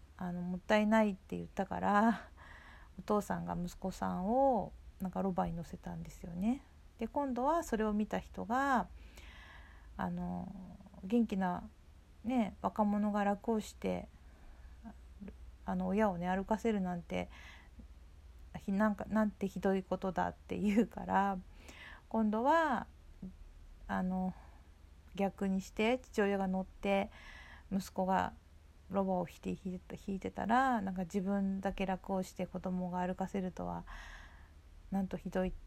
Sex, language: female, Japanese